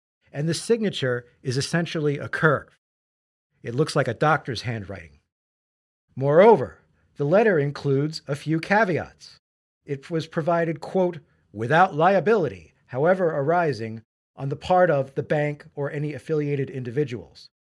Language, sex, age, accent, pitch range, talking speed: English, male, 40-59, American, 125-165 Hz, 130 wpm